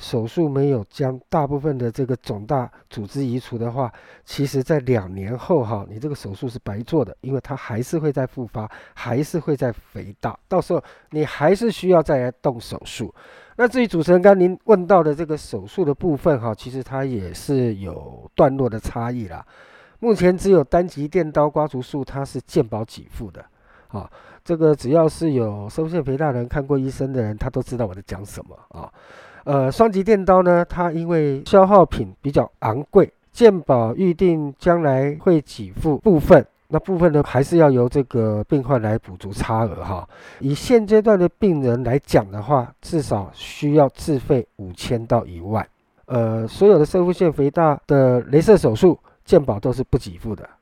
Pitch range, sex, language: 115-165 Hz, male, Chinese